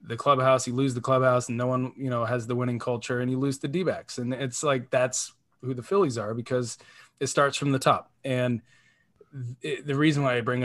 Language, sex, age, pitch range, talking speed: English, male, 20-39, 125-155 Hz, 225 wpm